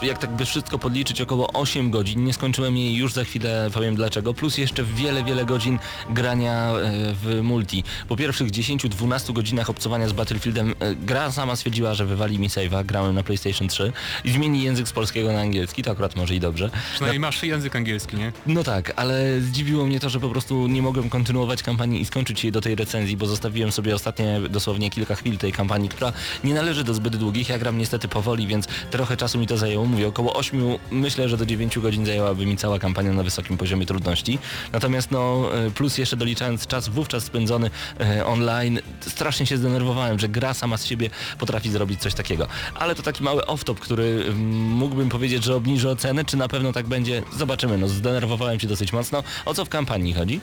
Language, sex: Polish, male